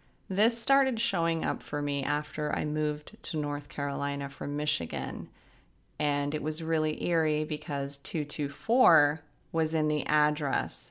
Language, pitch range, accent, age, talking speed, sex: English, 145-170 Hz, American, 30-49, 140 wpm, female